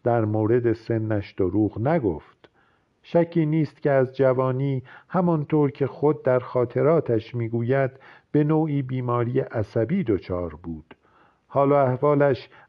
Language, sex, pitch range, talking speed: Persian, male, 115-145 Hz, 115 wpm